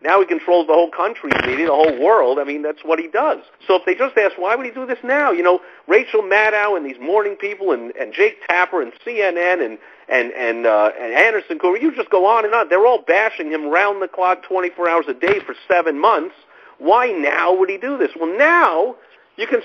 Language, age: English, 50-69